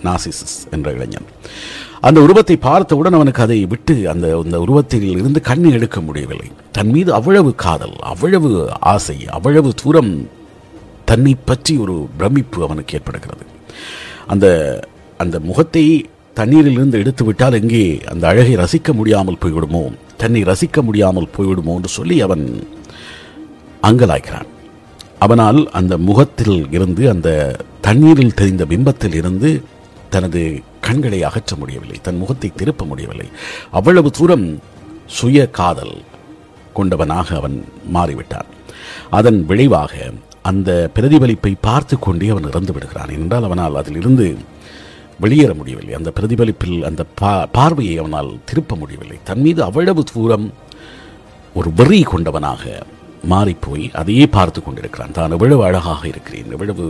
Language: Tamil